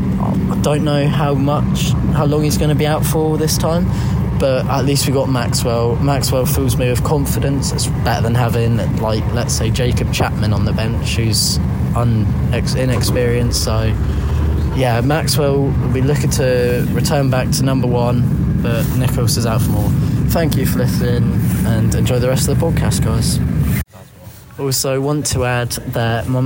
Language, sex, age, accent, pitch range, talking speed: English, male, 10-29, British, 110-135 Hz, 175 wpm